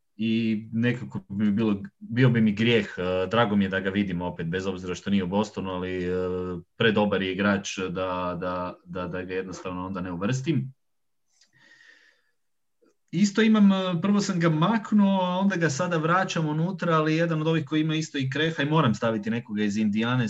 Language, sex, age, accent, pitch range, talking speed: English, male, 30-49, Croatian, 100-130 Hz, 175 wpm